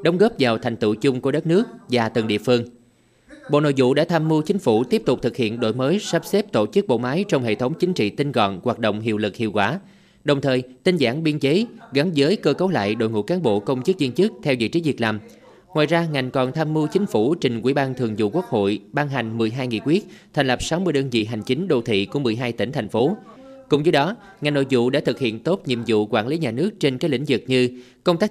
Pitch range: 120-170 Hz